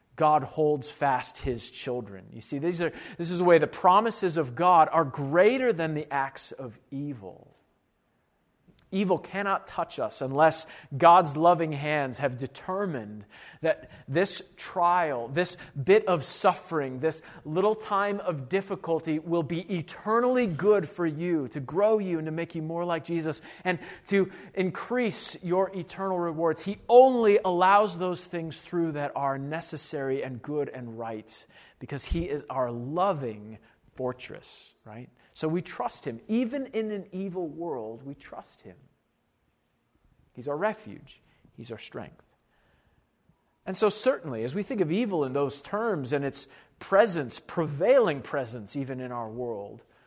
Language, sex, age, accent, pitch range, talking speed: English, male, 40-59, American, 140-190 Hz, 150 wpm